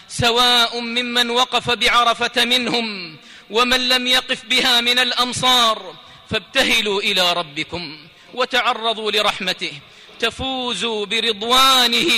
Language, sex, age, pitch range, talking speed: Arabic, male, 40-59, 175-240 Hz, 90 wpm